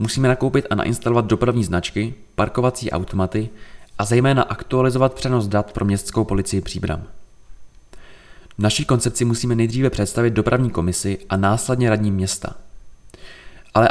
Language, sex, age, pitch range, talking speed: Czech, male, 20-39, 95-120 Hz, 130 wpm